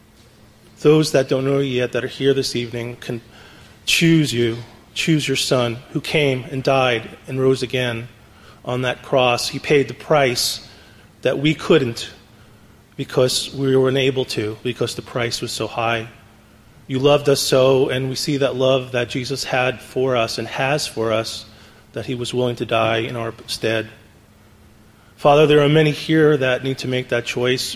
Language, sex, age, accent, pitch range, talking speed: English, male, 30-49, American, 110-135 Hz, 180 wpm